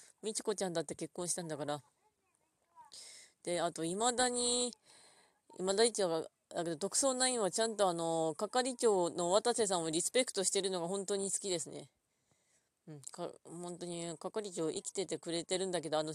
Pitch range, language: 165-220 Hz, Japanese